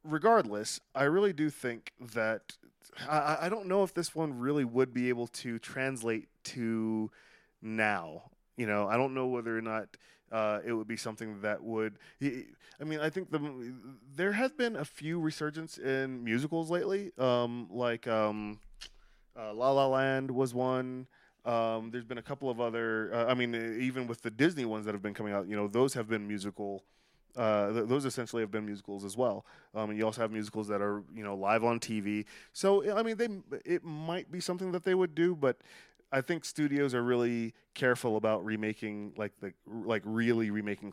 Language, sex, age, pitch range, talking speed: English, male, 20-39, 105-135 Hz, 200 wpm